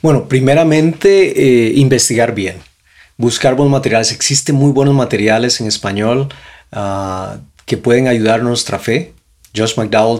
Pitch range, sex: 110-145 Hz, male